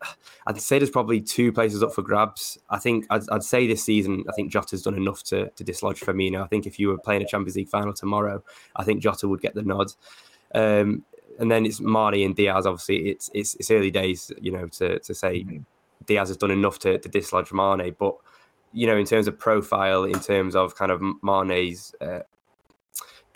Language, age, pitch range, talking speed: English, 10-29, 95-105 Hz, 215 wpm